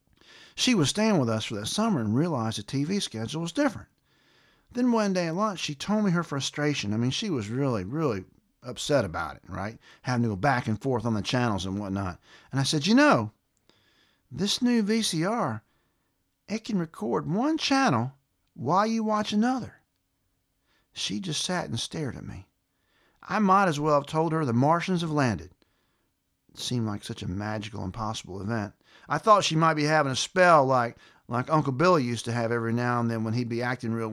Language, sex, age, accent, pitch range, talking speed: English, male, 50-69, American, 110-165 Hz, 200 wpm